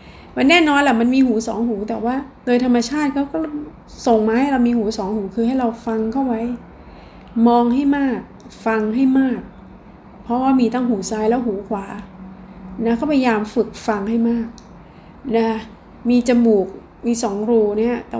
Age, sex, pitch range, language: 20-39, female, 215-245 Hz, Thai